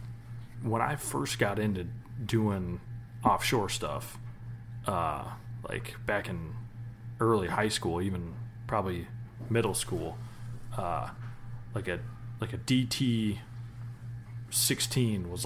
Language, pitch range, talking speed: English, 110-120 Hz, 95 wpm